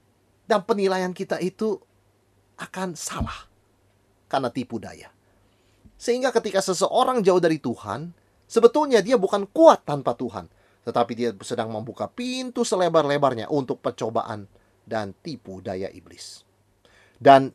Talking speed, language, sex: 115 wpm, Indonesian, male